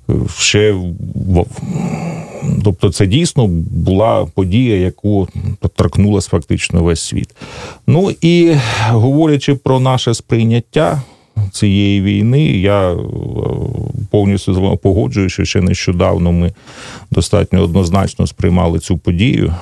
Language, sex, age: Russian, male, 40-59